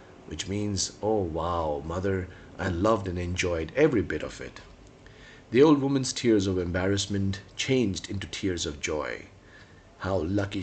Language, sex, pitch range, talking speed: English, male, 85-110 Hz, 145 wpm